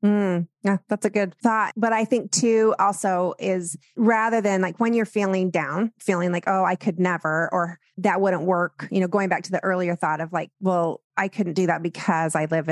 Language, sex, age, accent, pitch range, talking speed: English, female, 30-49, American, 175-210 Hz, 220 wpm